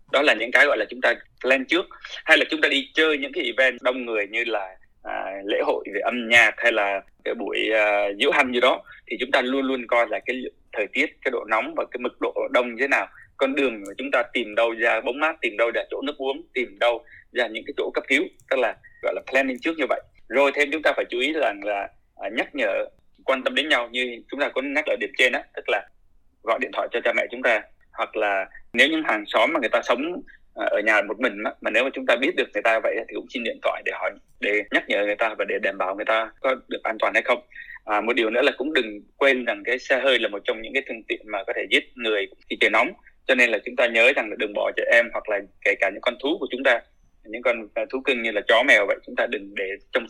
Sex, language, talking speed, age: male, Vietnamese, 285 wpm, 20-39